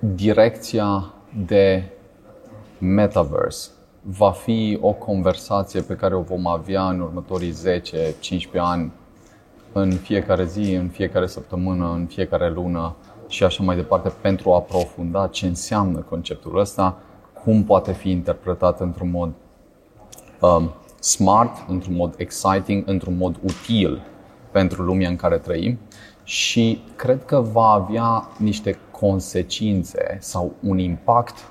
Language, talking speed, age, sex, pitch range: Romanian, 125 wpm, 30-49, male, 90-105 Hz